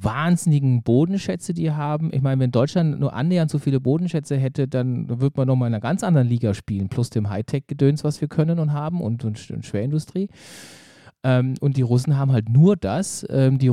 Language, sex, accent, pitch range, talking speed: German, male, German, 125-160 Hz, 190 wpm